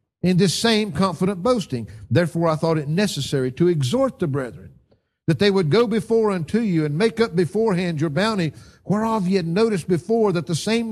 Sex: male